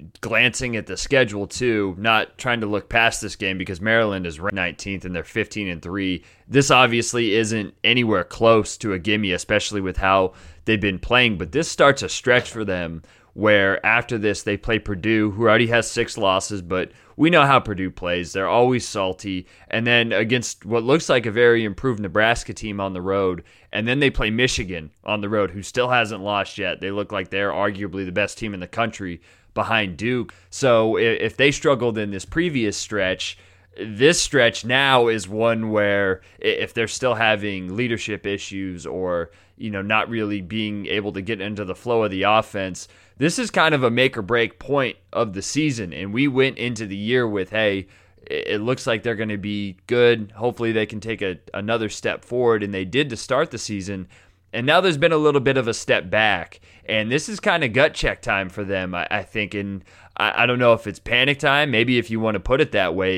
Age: 30-49